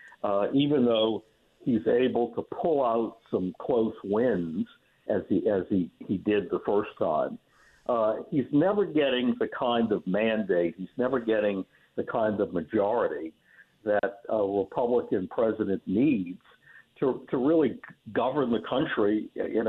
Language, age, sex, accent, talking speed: English, 60-79, male, American, 145 wpm